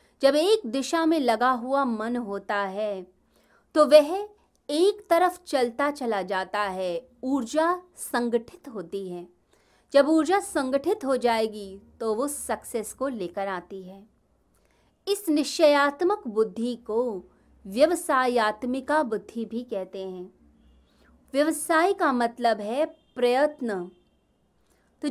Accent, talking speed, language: native, 115 wpm, Hindi